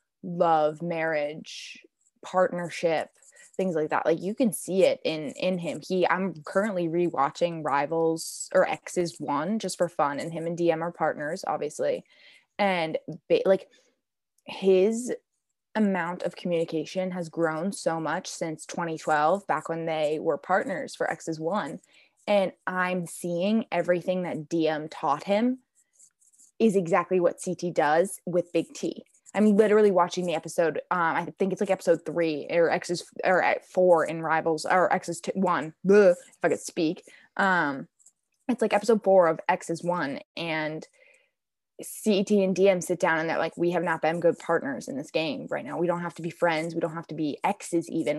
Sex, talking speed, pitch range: female, 170 wpm, 160-195 Hz